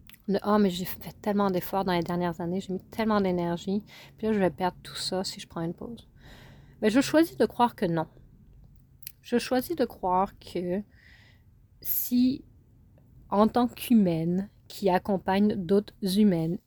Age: 30-49